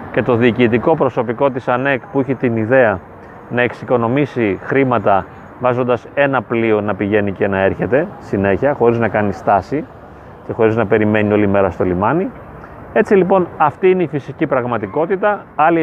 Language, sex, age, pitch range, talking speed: Greek, male, 30-49, 120-170 Hz, 160 wpm